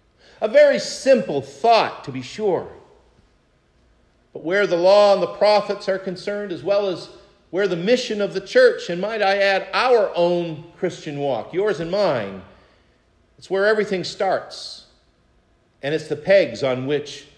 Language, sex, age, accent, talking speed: English, male, 50-69, American, 160 wpm